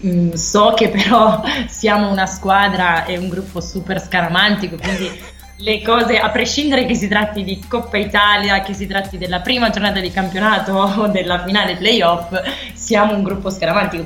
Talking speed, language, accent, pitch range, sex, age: 160 wpm, Italian, native, 175-210 Hz, female, 20-39